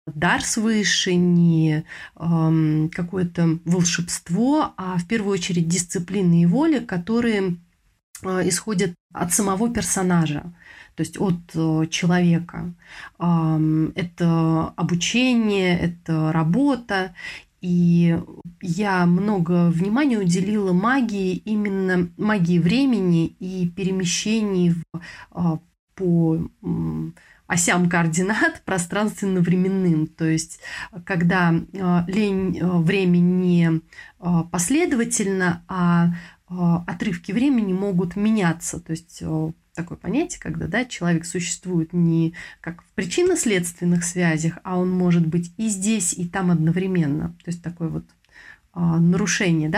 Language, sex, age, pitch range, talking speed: Russian, female, 30-49, 170-195 Hz, 105 wpm